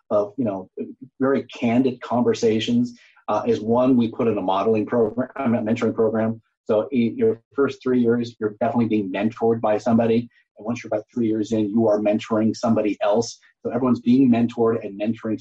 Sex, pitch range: male, 105-125 Hz